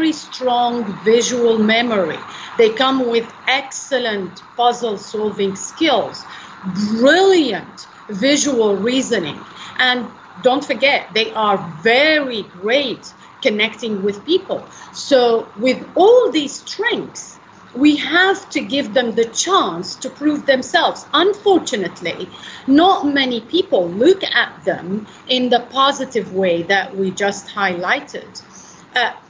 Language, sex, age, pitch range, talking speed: English, female, 40-59, 220-285 Hz, 110 wpm